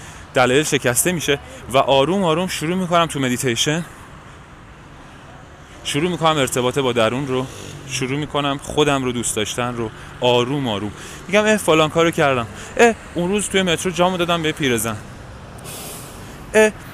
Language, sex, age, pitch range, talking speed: Persian, male, 20-39, 115-165 Hz, 140 wpm